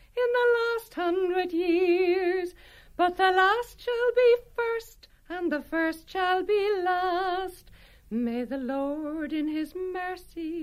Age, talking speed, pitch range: 60-79, 130 wpm, 270-370 Hz